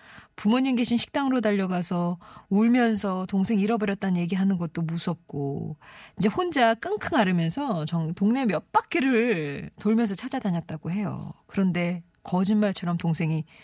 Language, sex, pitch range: Korean, female, 165-215 Hz